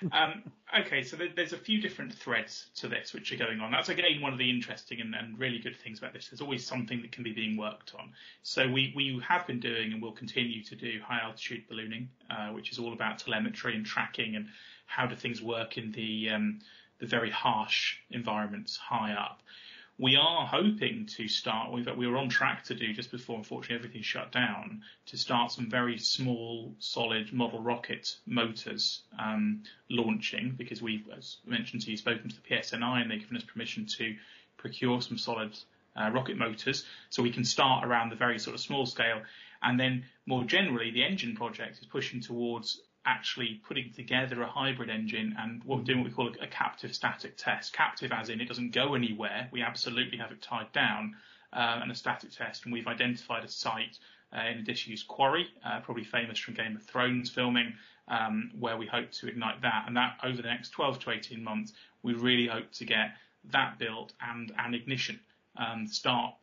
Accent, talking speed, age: British, 200 wpm, 30-49